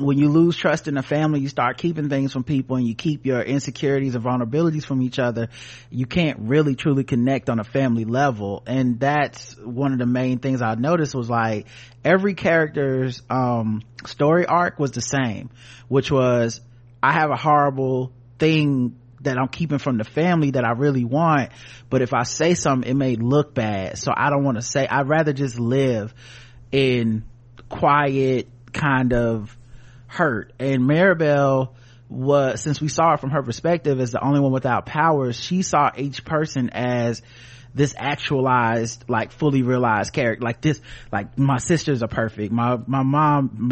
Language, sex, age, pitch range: English, male, 30-49, 120-145 Hz